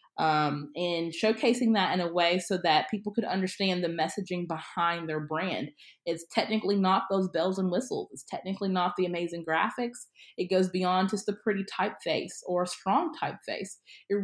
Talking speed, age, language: 175 wpm, 20-39, English